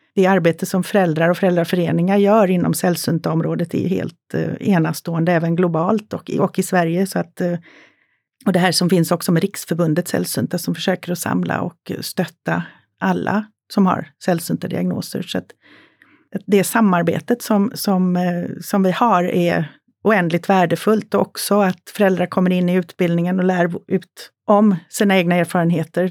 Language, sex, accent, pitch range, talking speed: Swedish, female, native, 175-205 Hz, 155 wpm